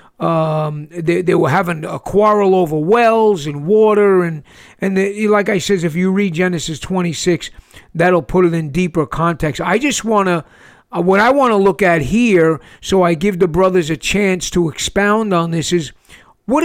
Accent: American